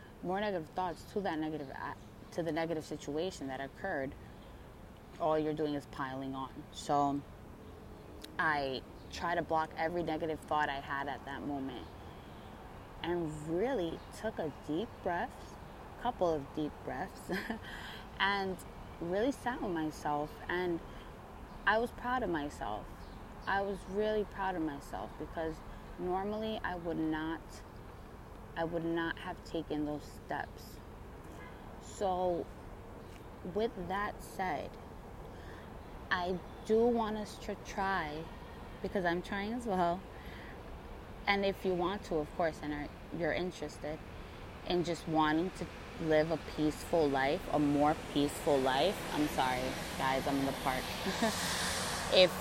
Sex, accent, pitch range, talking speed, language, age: female, American, 145-185 Hz, 135 wpm, English, 20-39